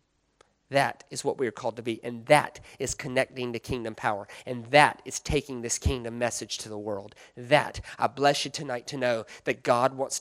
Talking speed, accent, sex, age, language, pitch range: 205 wpm, American, male, 30-49, English, 115-135 Hz